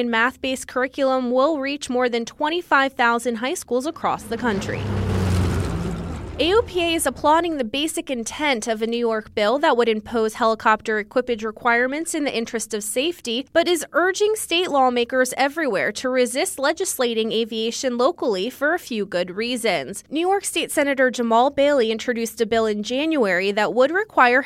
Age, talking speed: 20-39, 155 wpm